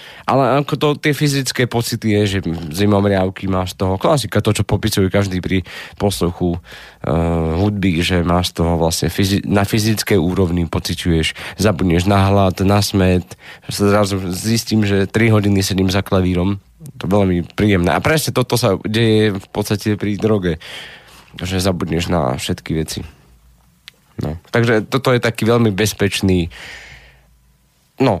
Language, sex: Slovak, male